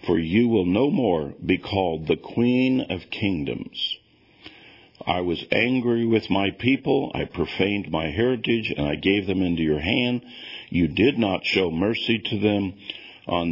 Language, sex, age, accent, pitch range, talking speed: English, male, 50-69, American, 85-115 Hz, 160 wpm